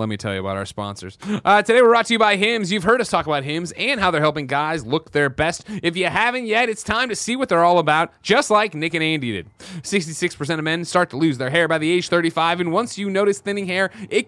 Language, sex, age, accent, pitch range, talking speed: English, male, 20-39, American, 125-180 Hz, 280 wpm